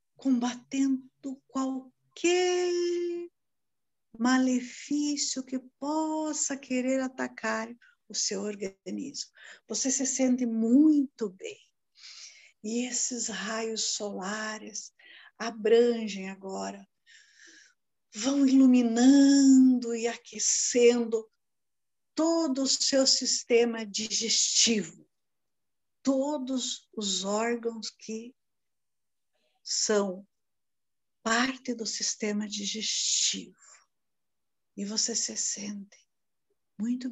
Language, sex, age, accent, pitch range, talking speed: Portuguese, female, 50-69, Brazilian, 215-270 Hz, 70 wpm